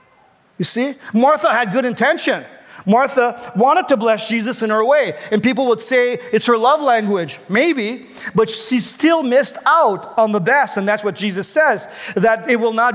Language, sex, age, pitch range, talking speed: English, male, 40-59, 220-270 Hz, 185 wpm